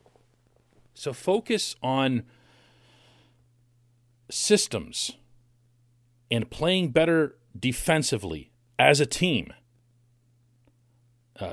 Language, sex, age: English, male, 40-59